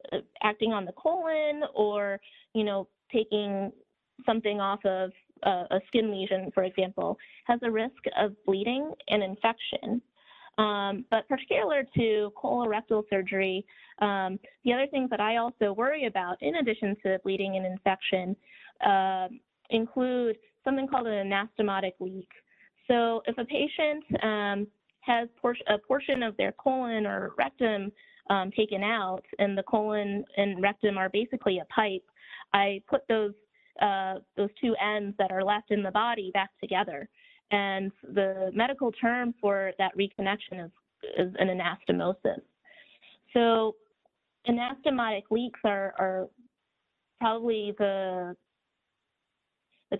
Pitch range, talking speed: 195-235 Hz, 135 wpm